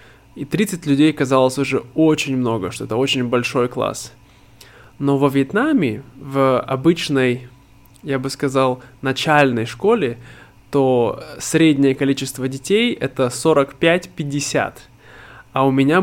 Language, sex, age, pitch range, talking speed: Russian, male, 20-39, 125-150 Hz, 115 wpm